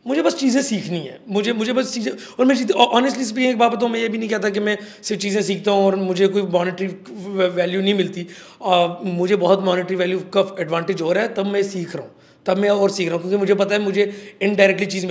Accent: native